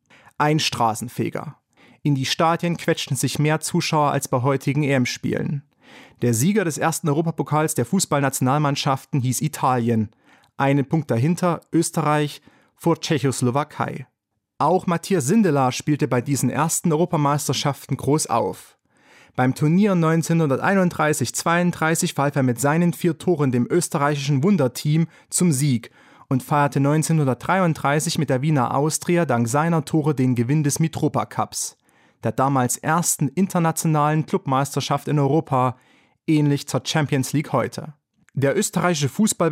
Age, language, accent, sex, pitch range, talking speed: 30-49, German, German, male, 135-160 Hz, 125 wpm